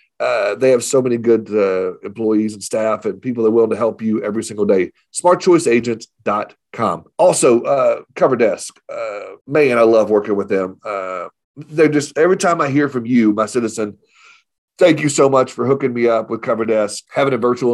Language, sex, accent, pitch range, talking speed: English, male, American, 115-155 Hz, 190 wpm